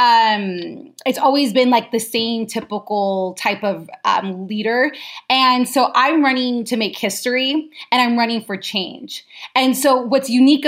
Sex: female